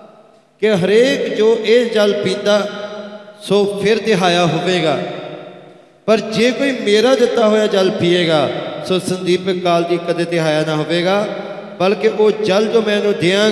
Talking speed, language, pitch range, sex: 140 wpm, English, 145-195 Hz, male